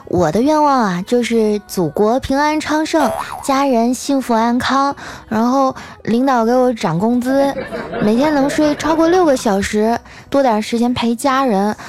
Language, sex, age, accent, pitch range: Chinese, female, 20-39, native, 195-280 Hz